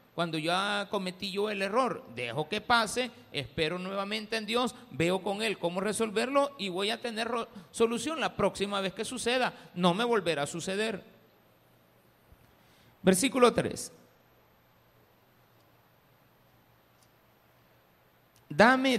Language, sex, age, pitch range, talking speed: Spanish, male, 50-69, 140-210 Hz, 115 wpm